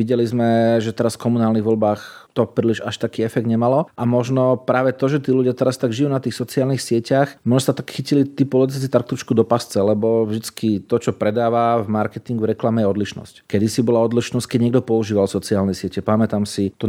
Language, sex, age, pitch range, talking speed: Slovak, male, 40-59, 115-135 Hz, 210 wpm